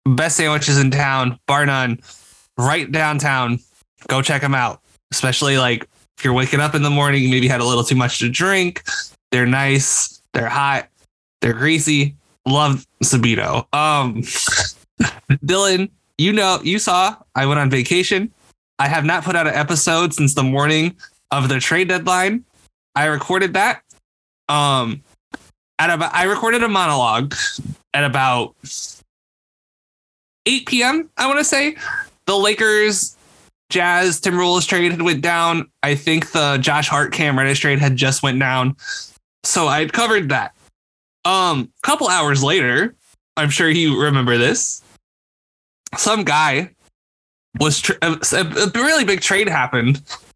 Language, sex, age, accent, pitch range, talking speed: English, male, 20-39, American, 130-175 Hz, 145 wpm